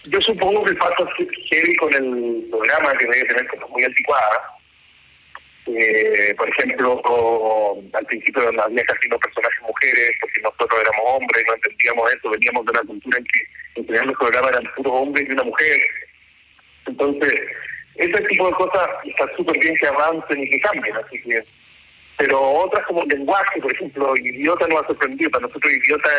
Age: 40-59